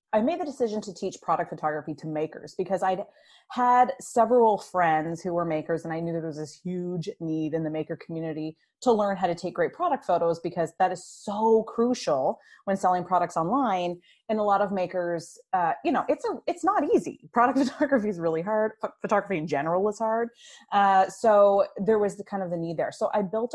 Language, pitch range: English, 170-225 Hz